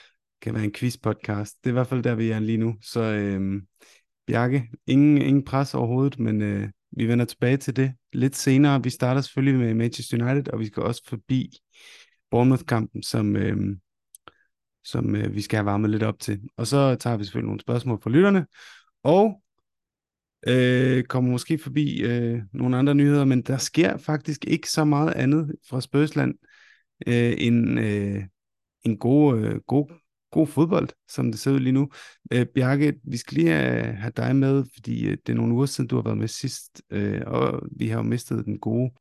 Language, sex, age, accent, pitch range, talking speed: Danish, male, 30-49, native, 115-140 Hz, 195 wpm